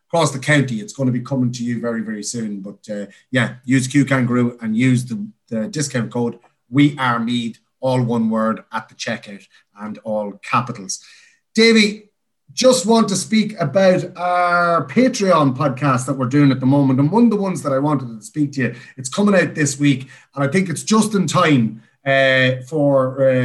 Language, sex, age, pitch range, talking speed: English, male, 30-49, 120-160 Hz, 190 wpm